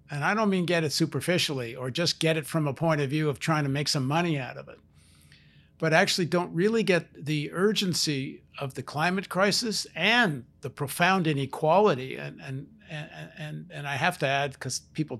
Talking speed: 195 wpm